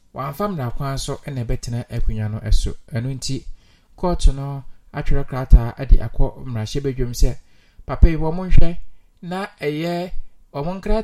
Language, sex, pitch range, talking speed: English, male, 120-150 Hz, 120 wpm